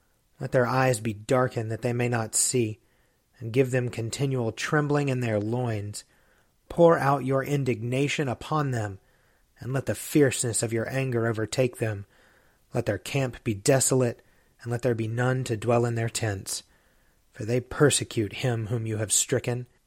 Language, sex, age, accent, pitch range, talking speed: English, male, 30-49, American, 110-135 Hz, 170 wpm